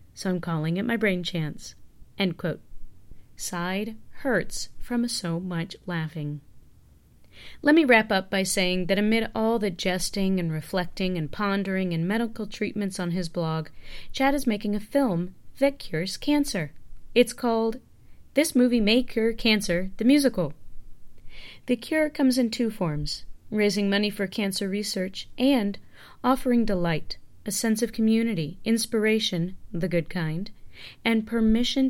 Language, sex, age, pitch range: English, female, 30-49, 175-225 Hz